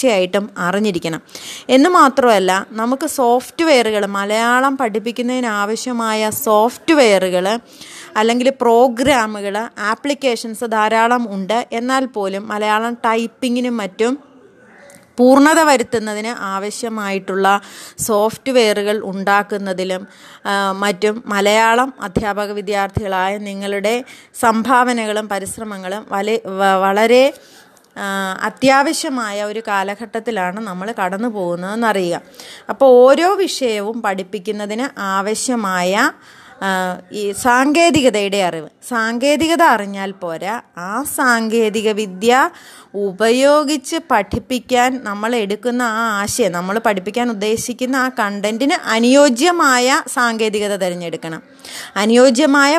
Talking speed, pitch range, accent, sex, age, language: 75 wpm, 200-255 Hz, native, female, 20-39, Malayalam